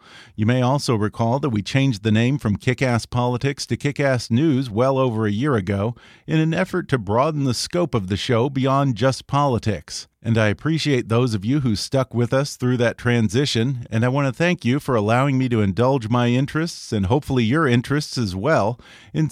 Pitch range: 115-145 Hz